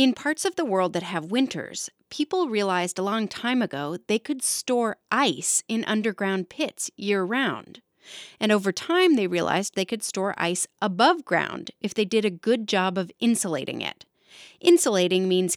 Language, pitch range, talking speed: English, 190-275 Hz, 170 wpm